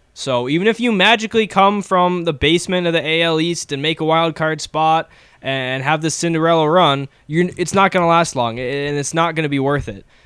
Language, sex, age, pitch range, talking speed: English, male, 10-29, 130-175 Hz, 220 wpm